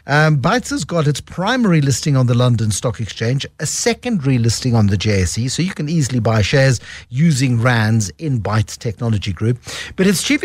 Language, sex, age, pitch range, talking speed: English, male, 60-79, 130-180 Hz, 190 wpm